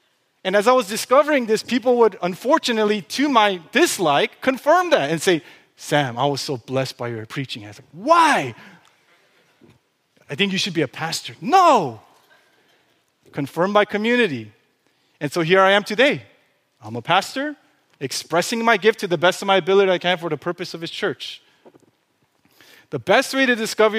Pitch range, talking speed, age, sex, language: 145-210 Hz, 175 wpm, 30-49, male, English